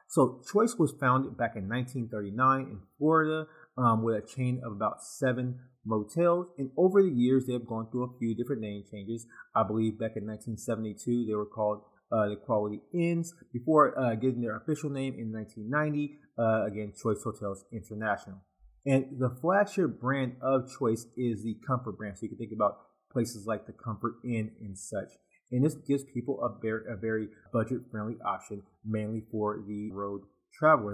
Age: 30-49